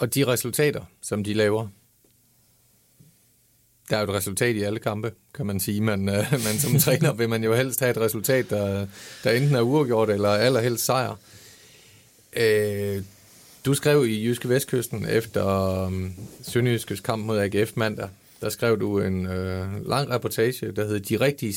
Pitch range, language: 105-125 Hz, Danish